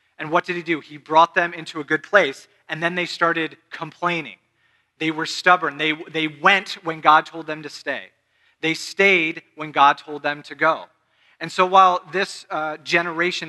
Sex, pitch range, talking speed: male, 145-175 Hz, 190 wpm